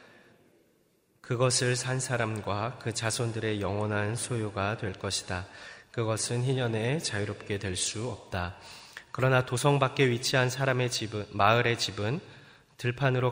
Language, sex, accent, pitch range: Korean, male, native, 105-125 Hz